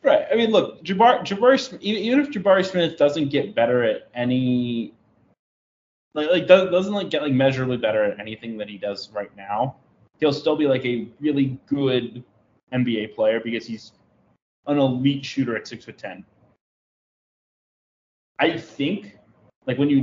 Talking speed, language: 160 wpm, English